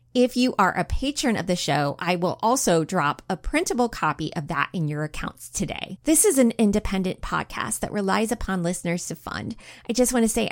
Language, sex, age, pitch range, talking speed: English, female, 20-39, 180-240 Hz, 205 wpm